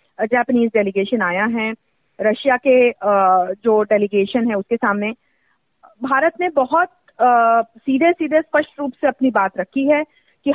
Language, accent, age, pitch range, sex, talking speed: Hindi, native, 40-59, 235-315 Hz, female, 135 wpm